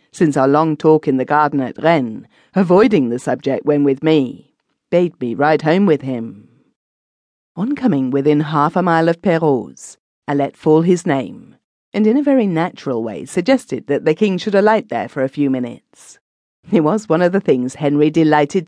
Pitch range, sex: 135-175 Hz, female